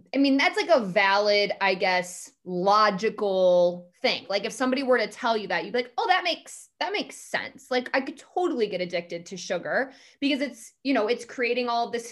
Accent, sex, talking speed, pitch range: American, female, 215 wpm, 195-260 Hz